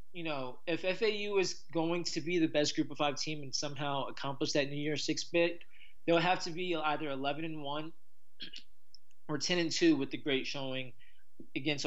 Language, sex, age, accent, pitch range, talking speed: English, male, 20-39, American, 135-165 Hz, 190 wpm